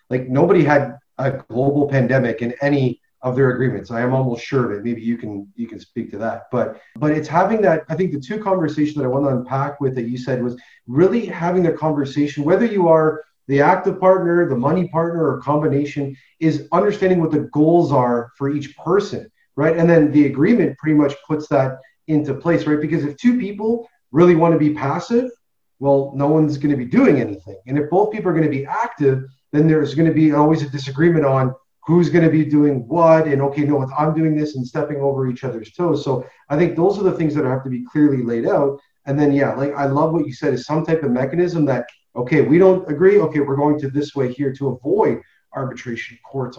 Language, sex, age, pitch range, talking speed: English, male, 30-49, 130-165 Hz, 230 wpm